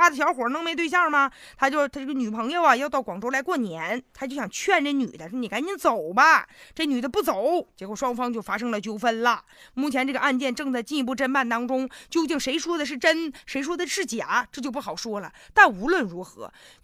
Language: Chinese